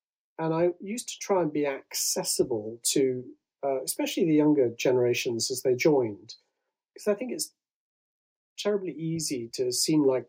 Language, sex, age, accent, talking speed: English, male, 40-59, British, 150 wpm